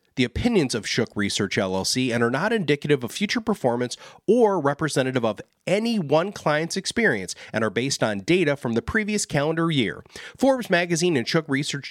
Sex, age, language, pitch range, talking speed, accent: male, 30-49, English, 120-175 Hz, 175 wpm, American